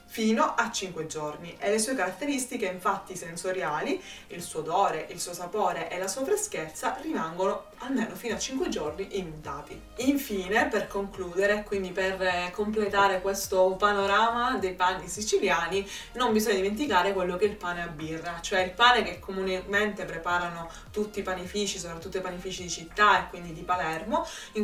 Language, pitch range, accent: Italian, 175-205 Hz, native